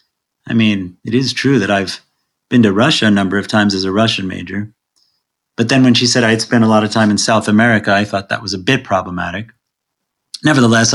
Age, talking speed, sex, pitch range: 30-49, 225 wpm, male, 105-135 Hz